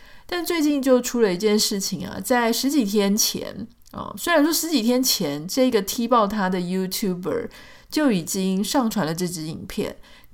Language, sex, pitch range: Chinese, female, 180-240 Hz